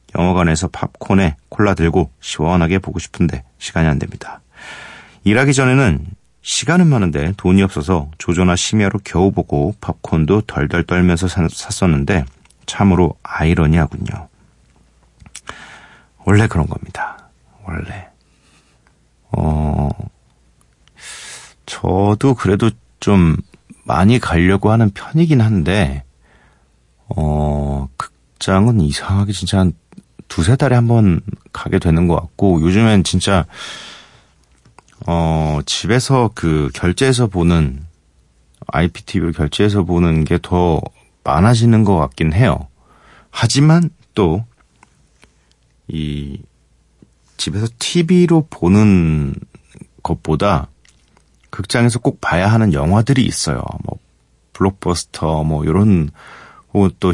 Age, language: 40-59, Korean